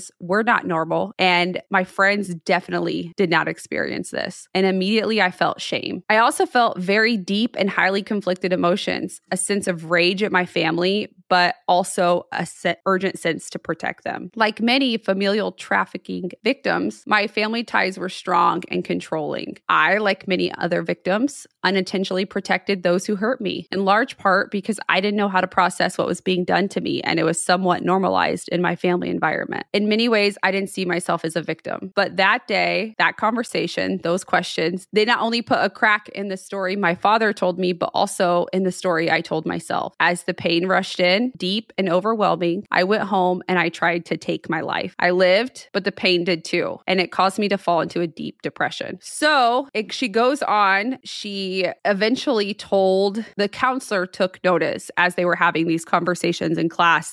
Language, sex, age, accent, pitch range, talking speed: English, female, 20-39, American, 175-210 Hz, 190 wpm